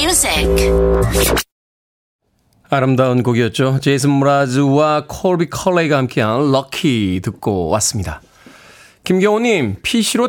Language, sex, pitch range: Korean, male, 110-165 Hz